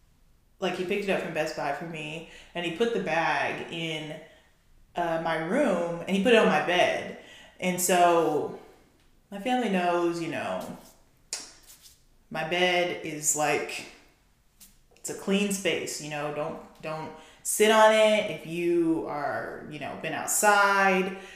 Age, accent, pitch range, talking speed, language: 20-39, American, 165-205 Hz, 155 wpm, English